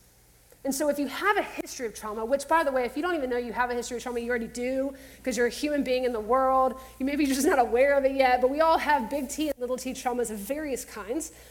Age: 30-49